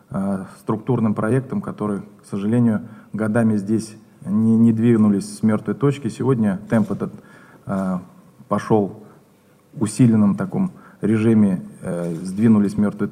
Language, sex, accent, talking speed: Russian, male, native, 120 wpm